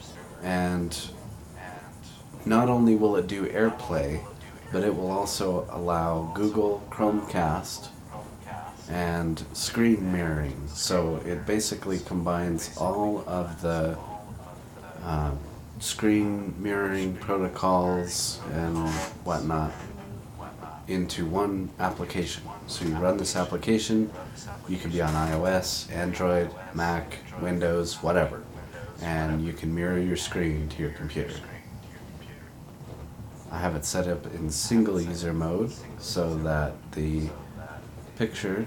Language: English